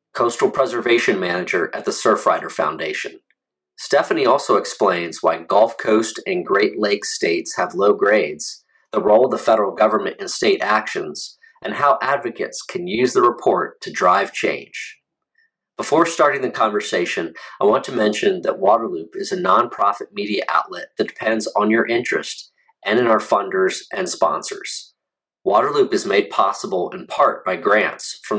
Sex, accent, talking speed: male, American, 155 wpm